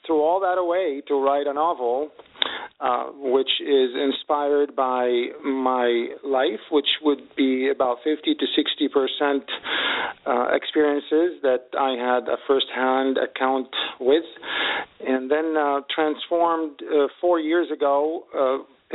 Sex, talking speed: male, 125 wpm